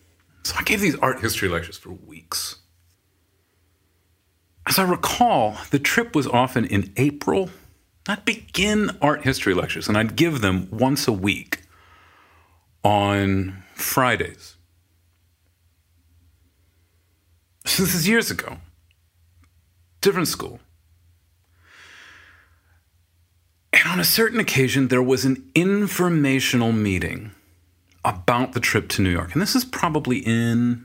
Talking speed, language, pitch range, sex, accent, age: 115 wpm, English, 90-125 Hz, male, American, 40-59